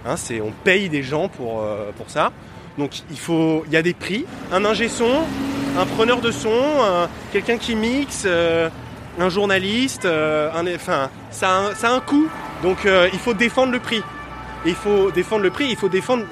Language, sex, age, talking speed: French, male, 20-39, 205 wpm